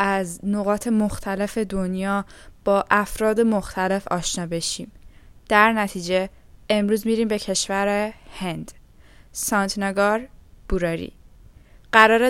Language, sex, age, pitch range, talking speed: Persian, female, 10-29, 200-245 Hz, 95 wpm